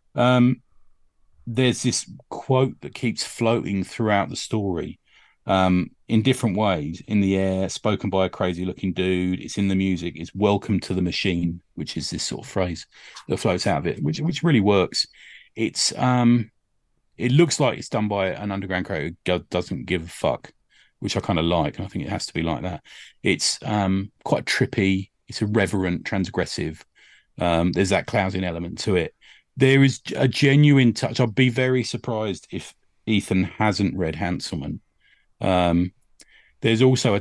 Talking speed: 175 wpm